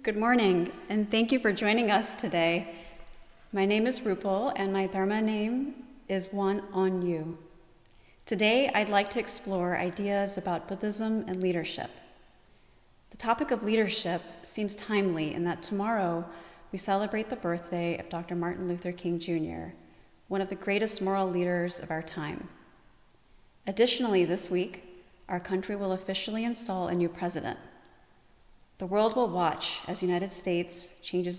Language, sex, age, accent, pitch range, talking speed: English, female, 30-49, American, 175-215 Hz, 145 wpm